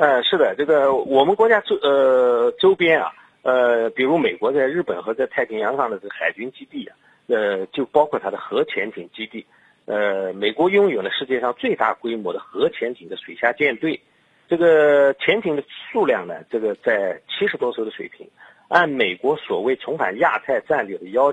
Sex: male